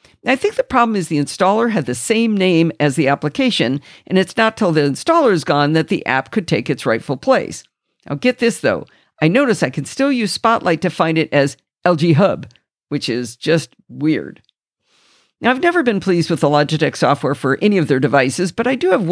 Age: 50-69